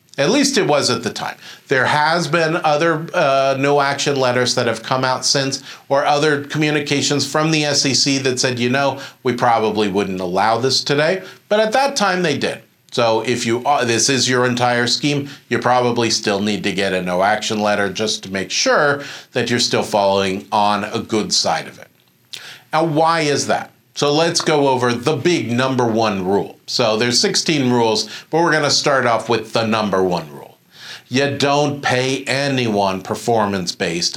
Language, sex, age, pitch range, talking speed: English, male, 40-59, 115-140 Hz, 190 wpm